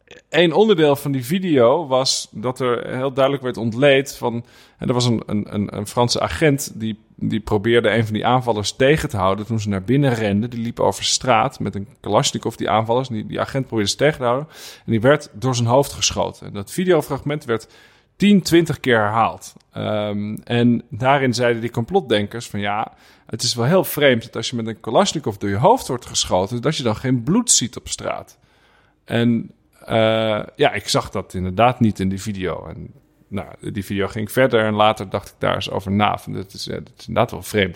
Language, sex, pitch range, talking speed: Dutch, male, 105-140 Hz, 215 wpm